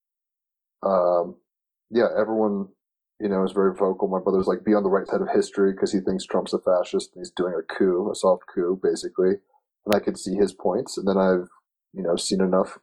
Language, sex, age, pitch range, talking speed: English, male, 30-49, 95-120 Hz, 215 wpm